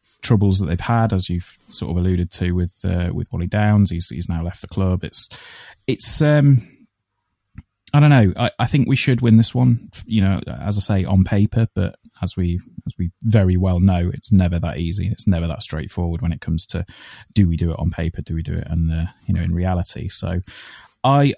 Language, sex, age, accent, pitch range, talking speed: English, male, 20-39, British, 95-110 Hz, 220 wpm